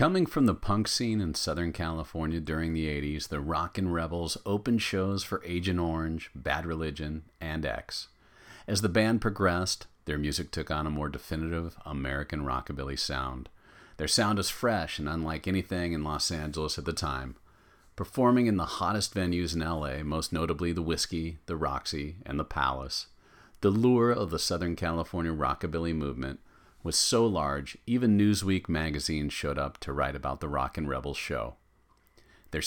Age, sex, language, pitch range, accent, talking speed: 40-59, male, English, 75-95 Hz, American, 165 wpm